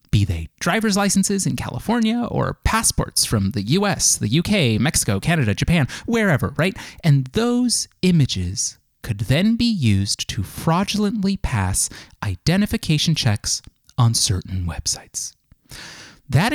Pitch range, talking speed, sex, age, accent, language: 115-180 Hz, 125 wpm, male, 30-49, American, English